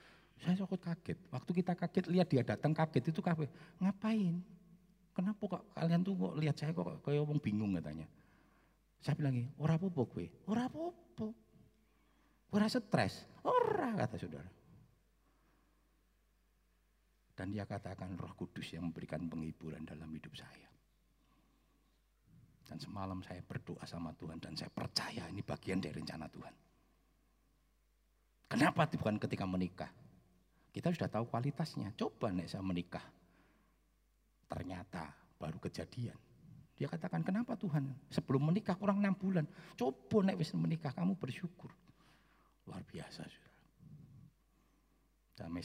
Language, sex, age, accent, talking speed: Indonesian, male, 50-69, native, 120 wpm